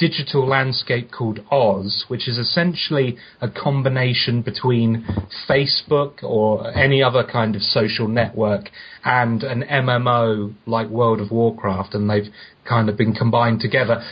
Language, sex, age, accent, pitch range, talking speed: English, male, 30-49, British, 110-130 Hz, 135 wpm